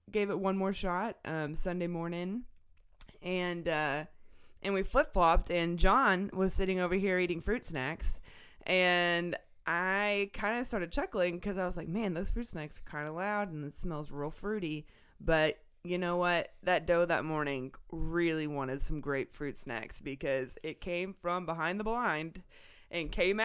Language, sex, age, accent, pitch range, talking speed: English, female, 20-39, American, 165-210 Hz, 175 wpm